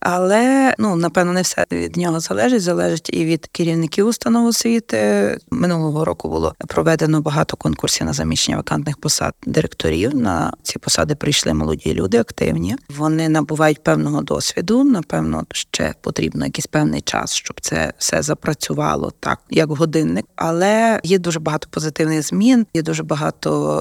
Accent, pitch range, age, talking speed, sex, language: native, 150-195 Hz, 20-39, 145 wpm, female, Ukrainian